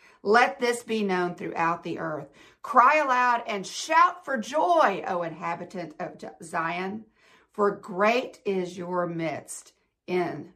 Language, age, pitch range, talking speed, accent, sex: English, 50-69, 175-220 Hz, 130 wpm, American, female